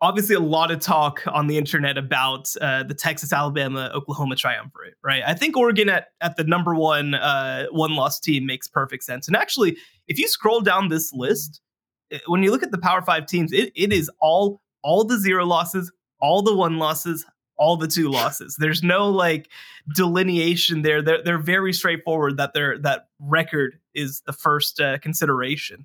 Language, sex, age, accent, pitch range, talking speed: English, male, 20-39, American, 145-185 Hz, 190 wpm